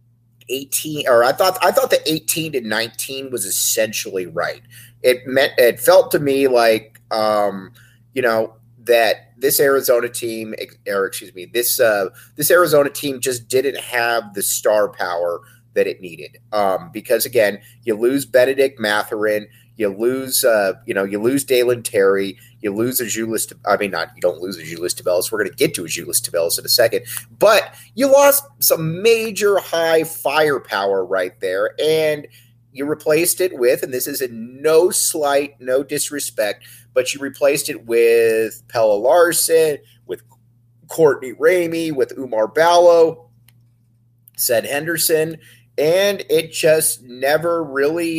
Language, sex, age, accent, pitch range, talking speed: English, male, 30-49, American, 120-160 Hz, 155 wpm